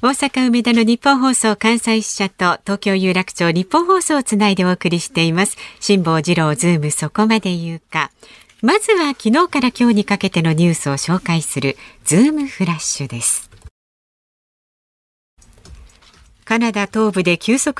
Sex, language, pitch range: female, Japanese, 160-240 Hz